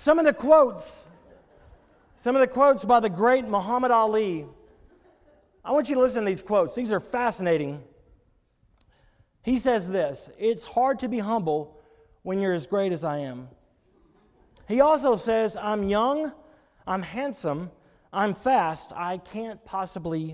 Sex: male